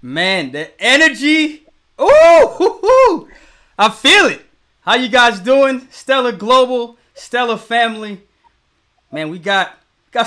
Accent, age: American, 20-39